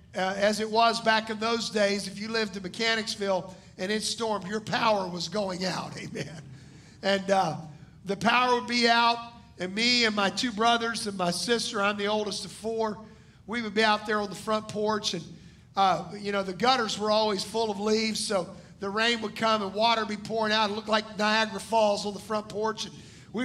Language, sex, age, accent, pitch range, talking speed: English, male, 50-69, American, 200-235 Hz, 215 wpm